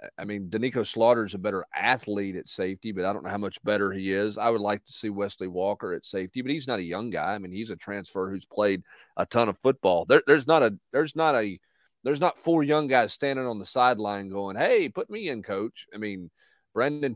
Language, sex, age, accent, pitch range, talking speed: English, male, 40-59, American, 95-120 Hz, 245 wpm